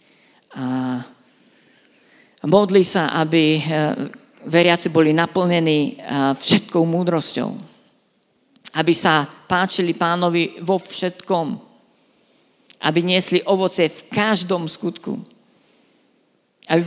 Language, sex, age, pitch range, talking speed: Slovak, female, 50-69, 155-195 Hz, 80 wpm